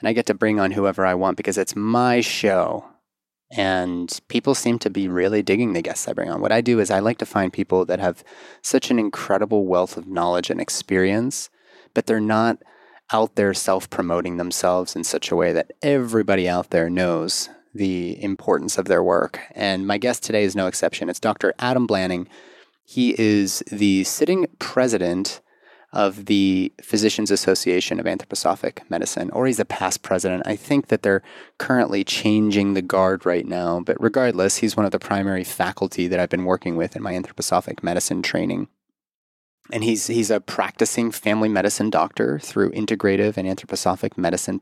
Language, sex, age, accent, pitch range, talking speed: English, male, 30-49, American, 95-110 Hz, 180 wpm